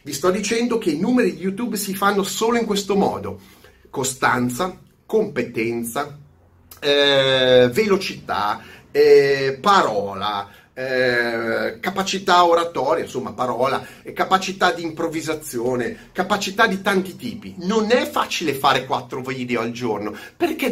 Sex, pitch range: male, 130-215 Hz